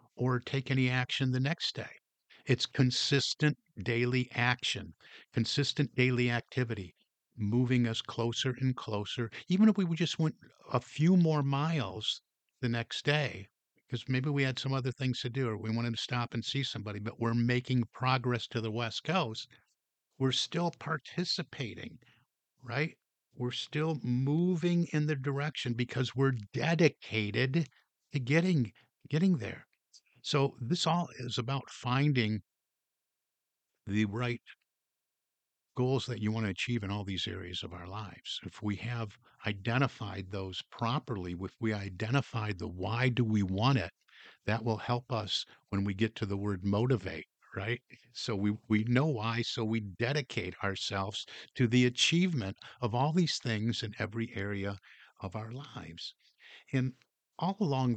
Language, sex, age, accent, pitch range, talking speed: English, male, 50-69, American, 110-135 Hz, 150 wpm